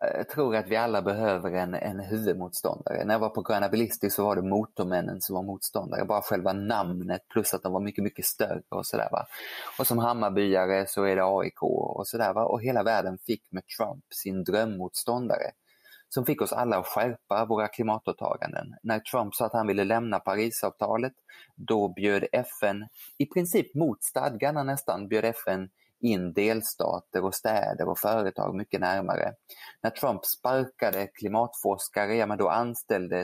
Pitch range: 100-120 Hz